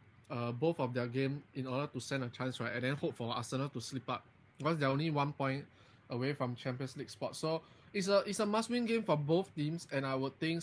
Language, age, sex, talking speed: English, 20-39, male, 250 wpm